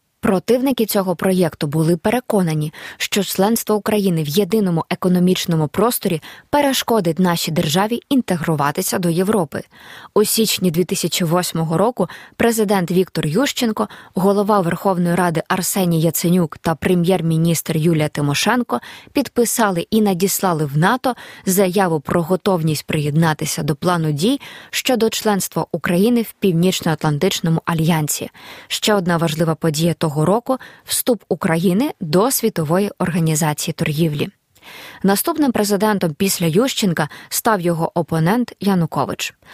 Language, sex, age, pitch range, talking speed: Ukrainian, female, 20-39, 170-210 Hz, 110 wpm